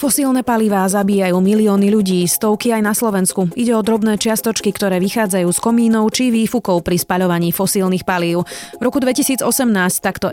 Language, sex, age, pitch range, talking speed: Slovak, female, 30-49, 175-230 Hz, 155 wpm